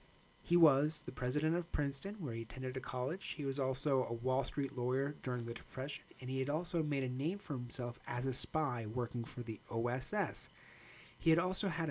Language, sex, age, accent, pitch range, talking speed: English, male, 30-49, American, 125-160 Hz, 205 wpm